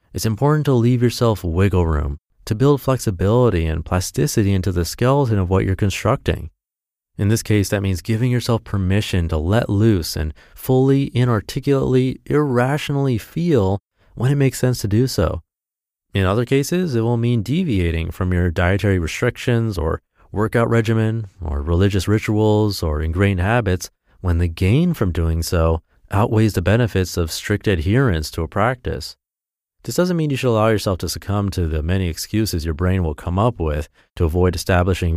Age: 30-49